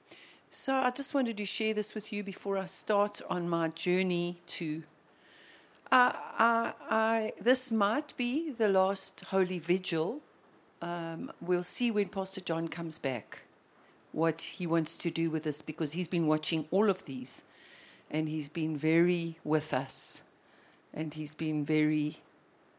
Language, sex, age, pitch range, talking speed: English, female, 60-79, 155-190 Hz, 155 wpm